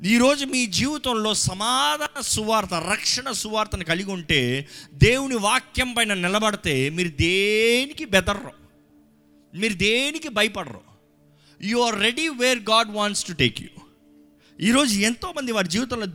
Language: Telugu